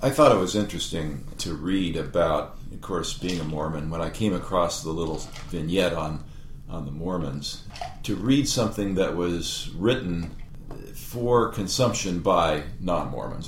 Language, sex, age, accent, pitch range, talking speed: English, male, 50-69, American, 80-100 Hz, 150 wpm